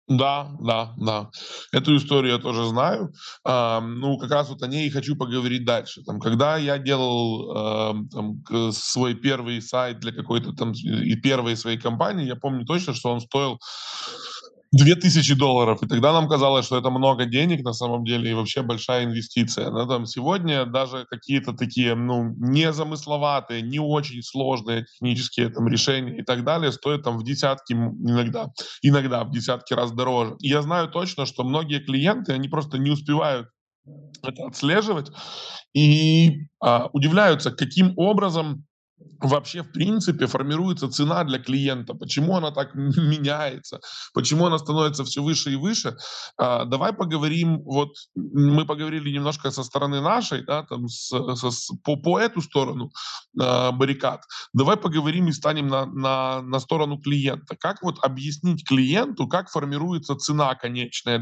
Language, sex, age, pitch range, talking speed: Russian, male, 20-39, 125-155 Hz, 150 wpm